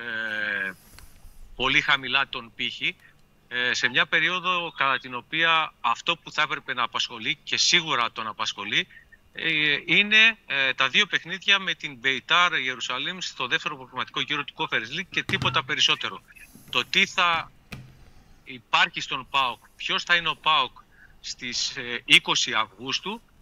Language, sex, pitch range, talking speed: Greek, male, 115-160 Hz, 130 wpm